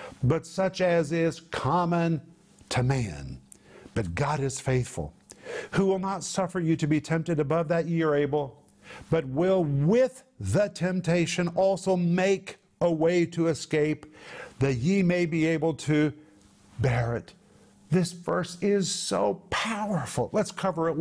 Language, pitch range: English, 140-175 Hz